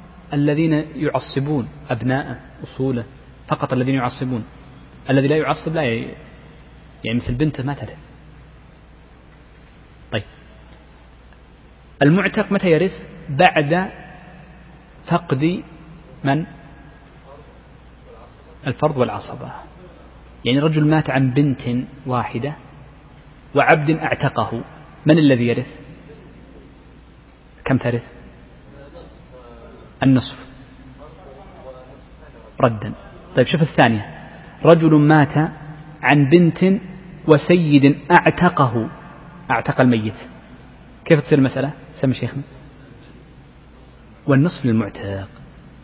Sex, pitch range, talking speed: male, 125-155 Hz, 75 wpm